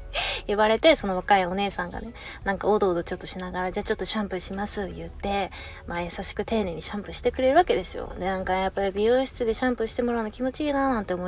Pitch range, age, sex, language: 190-285 Hz, 20-39, female, Japanese